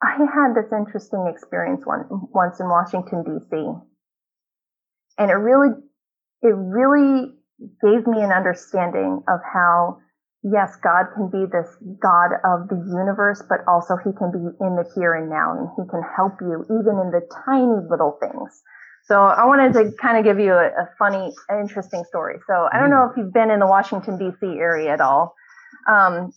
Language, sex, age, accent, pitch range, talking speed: English, female, 30-49, American, 175-235 Hz, 175 wpm